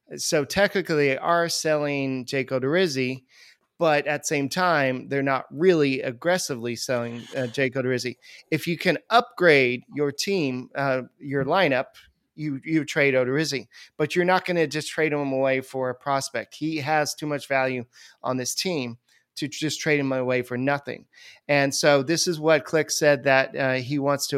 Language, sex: English, male